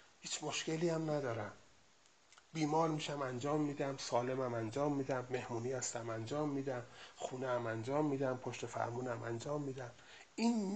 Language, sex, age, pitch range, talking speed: Persian, male, 30-49, 125-175 Hz, 135 wpm